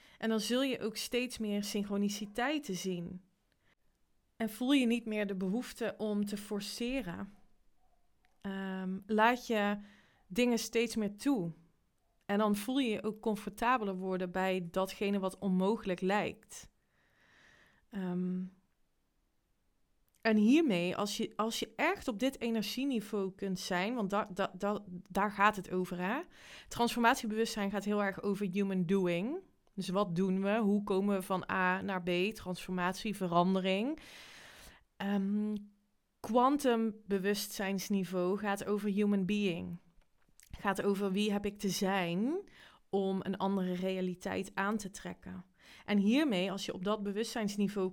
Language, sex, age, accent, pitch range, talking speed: Dutch, female, 20-39, Dutch, 185-220 Hz, 130 wpm